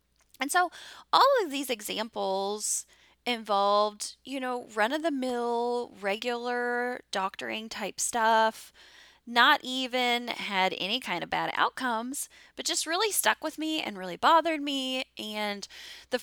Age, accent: 10-29, American